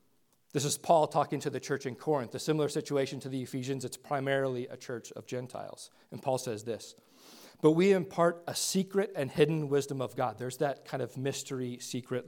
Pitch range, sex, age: 135-165 Hz, male, 40-59